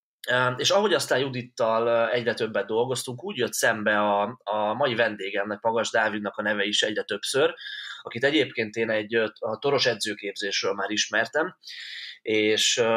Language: Hungarian